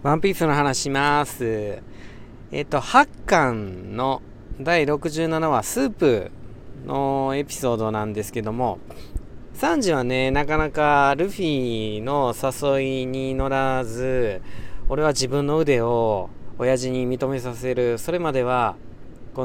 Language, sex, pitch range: Japanese, male, 110-145 Hz